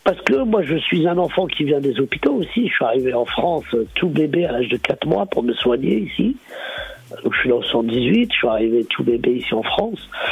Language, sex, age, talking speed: French, male, 50-69, 245 wpm